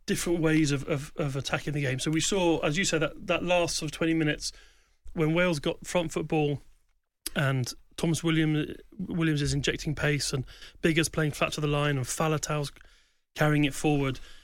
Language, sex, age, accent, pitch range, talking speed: English, male, 30-49, British, 140-160 Hz, 185 wpm